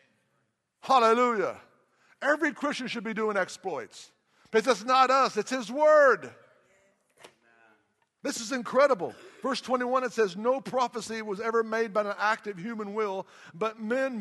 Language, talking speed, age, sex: English, 145 wpm, 50-69, male